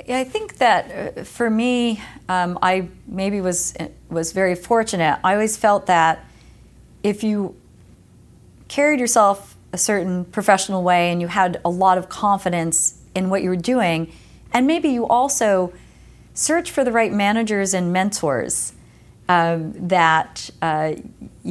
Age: 40-59